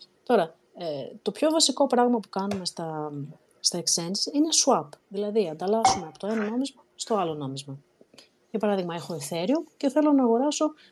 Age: 30-49